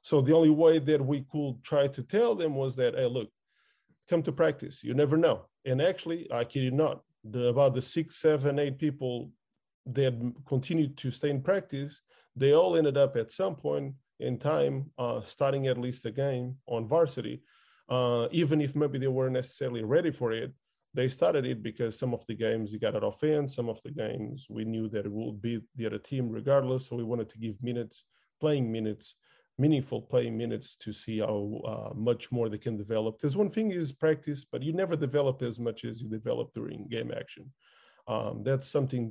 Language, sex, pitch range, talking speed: English, male, 115-145 Hz, 205 wpm